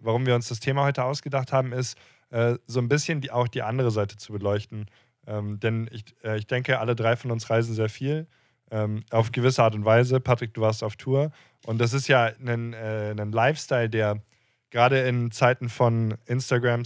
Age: 20-39